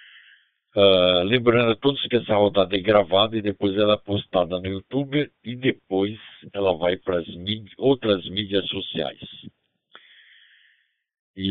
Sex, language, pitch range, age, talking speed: male, Portuguese, 95-115 Hz, 60-79, 140 wpm